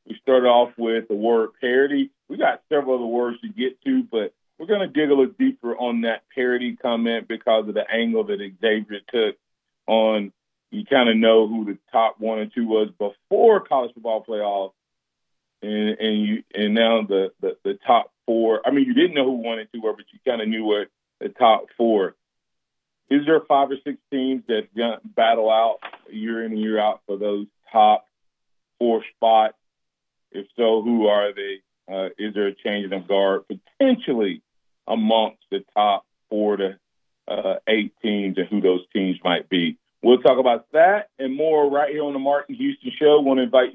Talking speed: 195 wpm